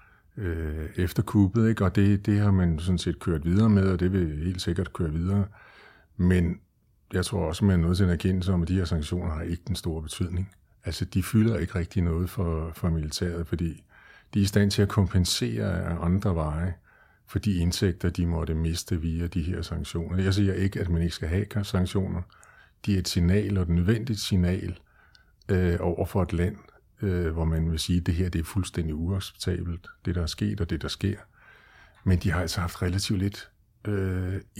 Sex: male